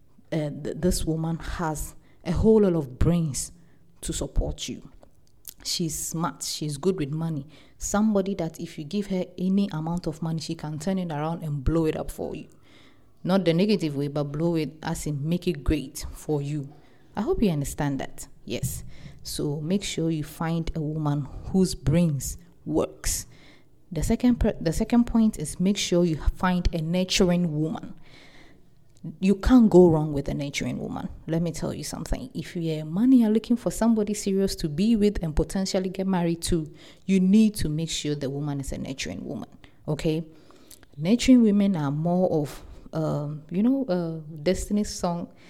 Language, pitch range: English, 155-190 Hz